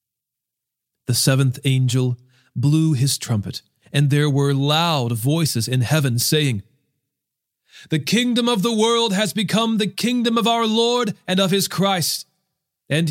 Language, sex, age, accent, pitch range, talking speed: English, male, 40-59, American, 130-180 Hz, 140 wpm